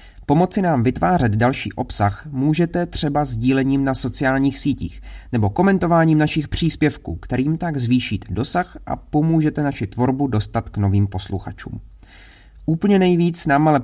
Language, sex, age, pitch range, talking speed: Czech, male, 30-49, 100-135 Hz, 135 wpm